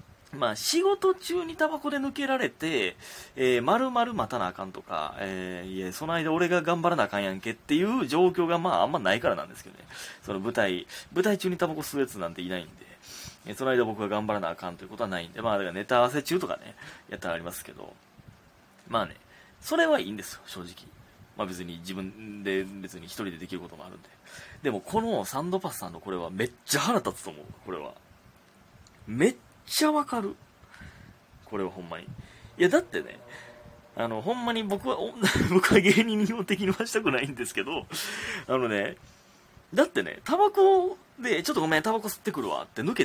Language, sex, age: Japanese, male, 20-39